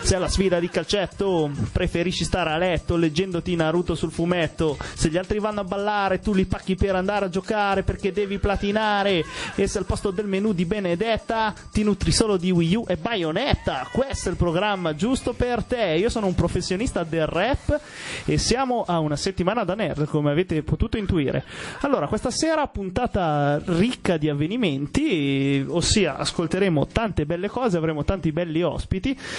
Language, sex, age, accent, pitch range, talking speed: Italian, male, 30-49, native, 155-195 Hz, 175 wpm